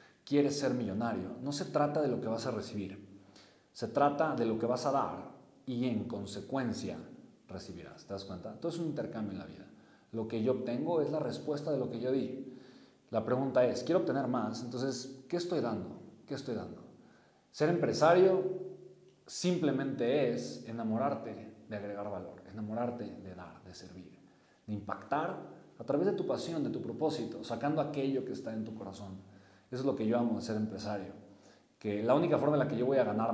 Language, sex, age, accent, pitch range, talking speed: Spanish, male, 40-59, Mexican, 105-130 Hz, 195 wpm